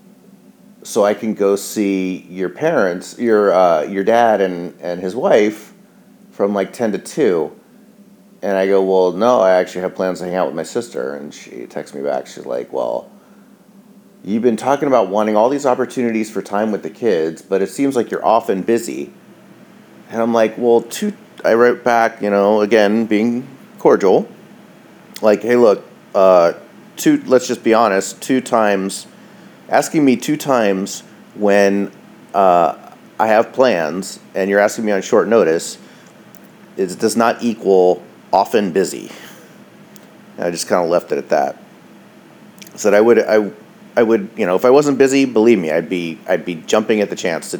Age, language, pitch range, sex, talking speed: 30-49, English, 95-130 Hz, male, 180 wpm